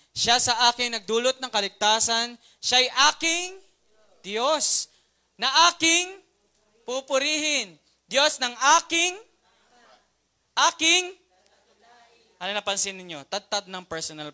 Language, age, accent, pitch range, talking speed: Filipino, 20-39, native, 170-235 Hz, 90 wpm